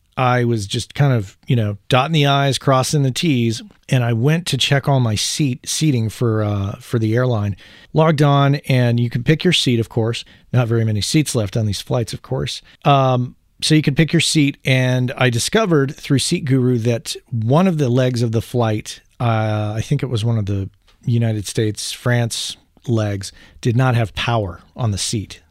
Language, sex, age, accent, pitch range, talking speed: English, male, 40-59, American, 110-140 Hz, 205 wpm